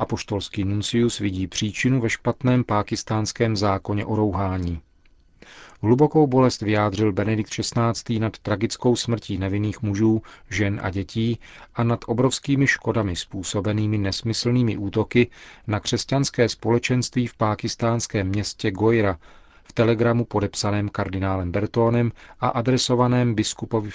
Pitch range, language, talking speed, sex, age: 100-115 Hz, Czech, 115 wpm, male, 40-59